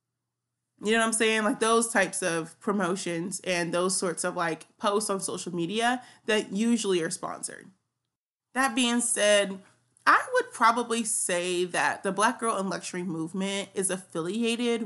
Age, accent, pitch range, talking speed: 30-49, American, 170-220 Hz, 160 wpm